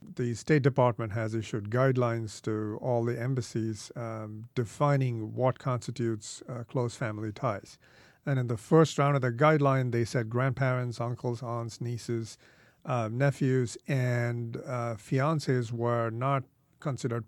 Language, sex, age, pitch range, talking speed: English, male, 40-59, 120-140 Hz, 140 wpm